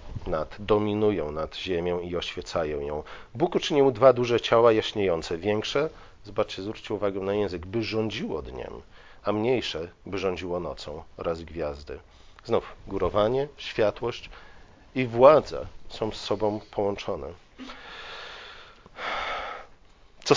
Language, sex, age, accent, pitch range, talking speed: Polish, male, 40-59, native, 90-115 Hz, 115 wpm